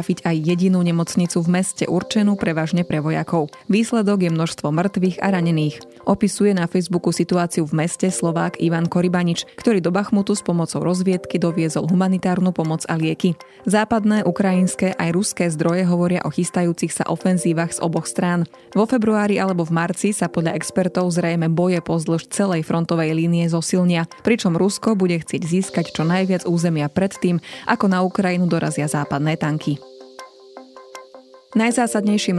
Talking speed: 150 wpm